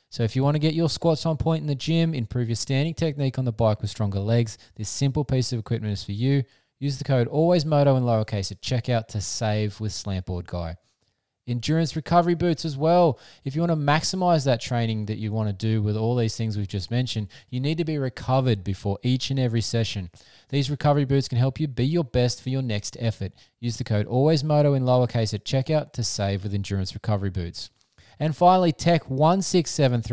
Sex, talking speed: male, 215 wpm